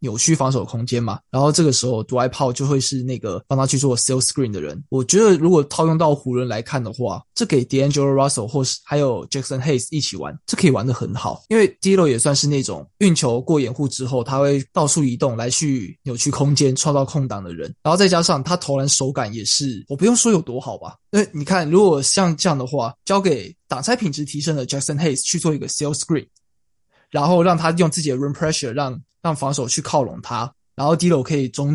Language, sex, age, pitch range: Chinese, male, 20-39, 130-165 Hz